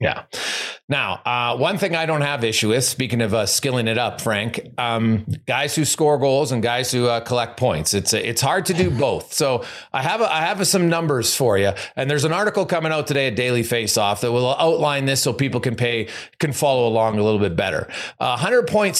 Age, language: 40-59, English